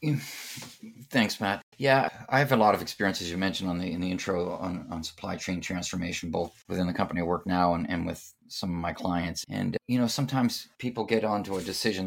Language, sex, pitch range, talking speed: English, male, 90-115 Hz, 225 wpm